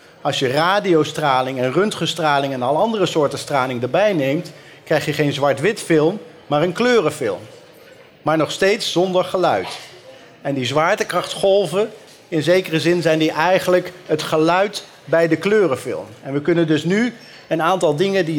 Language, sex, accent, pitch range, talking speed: Dutch, male, Dutch, 150-185 Hz, 155 wpm